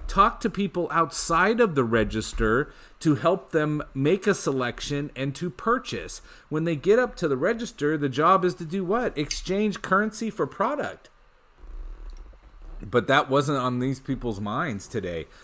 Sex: male